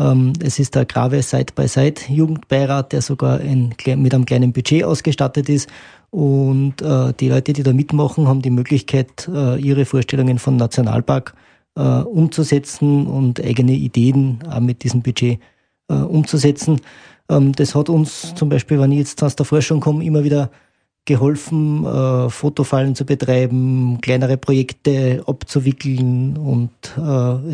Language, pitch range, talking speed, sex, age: German, 130-145 Hz, 140 wpm, male, 20-39